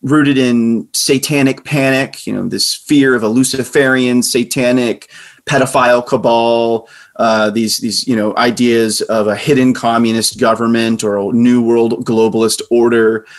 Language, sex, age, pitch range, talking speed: English, male, 30-49, 110-130 Hz, 140 wpm